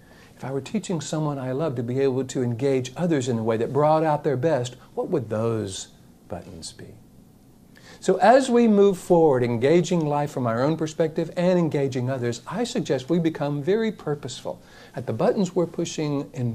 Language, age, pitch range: English, 60-79, 120-170 Hz